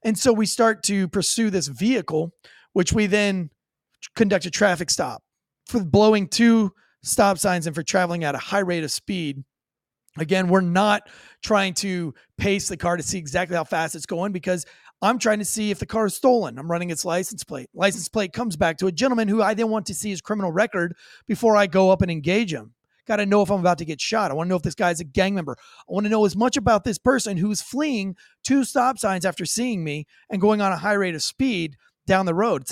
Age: 30-49